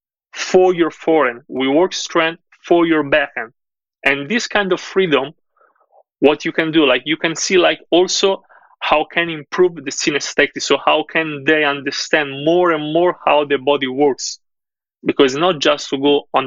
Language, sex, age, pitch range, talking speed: English, male, 30-49, 135-180 Hz, 175 wpm